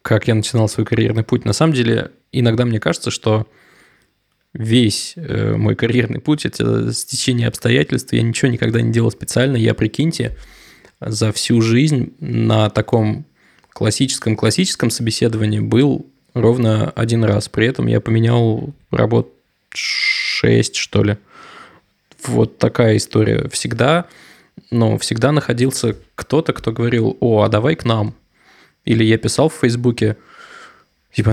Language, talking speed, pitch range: Russian, 135 wpm, 110-130 Hz